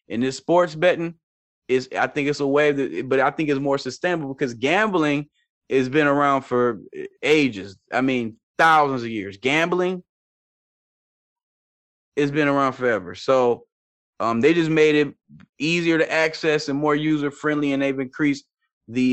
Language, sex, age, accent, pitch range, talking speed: English, male, 20-39, American, 115-155 Hz, 155 wpm